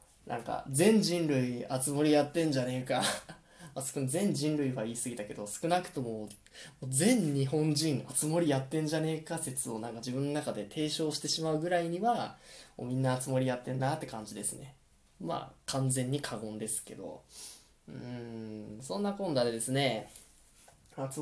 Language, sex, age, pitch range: Japanese, male, 10-29, 120-170 Hz